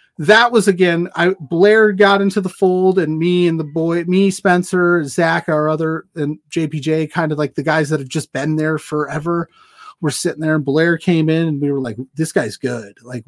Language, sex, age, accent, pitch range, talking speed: English, male, 30-49, American, 145-175 Hz, 210 wpm